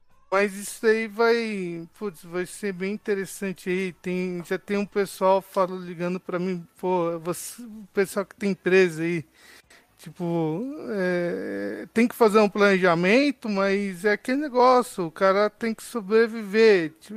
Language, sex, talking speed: Portuguese, male, 150 wpm